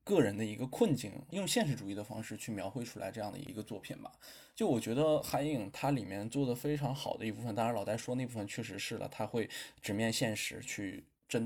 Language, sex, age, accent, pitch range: Chinese, male, 20-39, native, 110-145 Hz